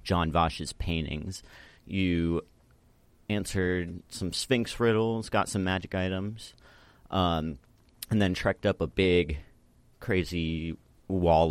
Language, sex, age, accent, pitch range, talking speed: English, male, 30-49, American, 80-105 Hz, 110 wpm